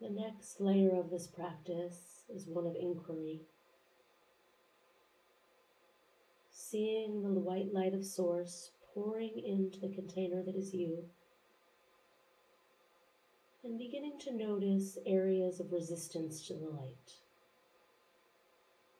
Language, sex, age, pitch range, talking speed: English, female, 40-59, 170-185 Hz, 105 wpm